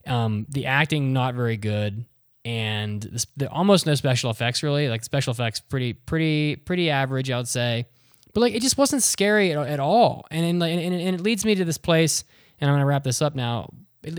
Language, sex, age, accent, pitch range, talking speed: English, male, 10-29, American, 120-160 Hz, 215 wpm